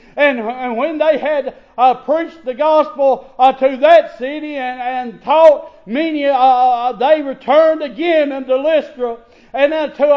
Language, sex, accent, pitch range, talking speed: English, male, American, 265-310 Hz, 120 wpm